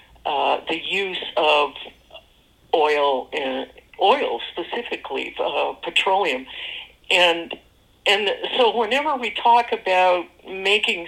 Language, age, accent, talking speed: English, 60-79, American, 95 wpm